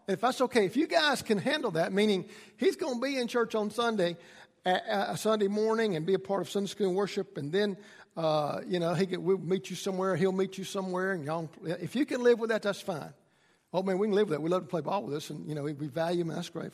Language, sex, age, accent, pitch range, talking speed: English, male, 50-69, American, 175-225 Hz, 280 wpm